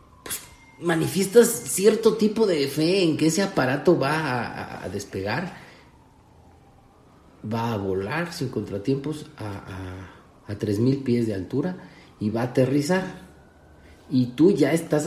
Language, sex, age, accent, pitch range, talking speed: Spanish, male, 40-59, Mexican, 110-165 Hz, 130 wpm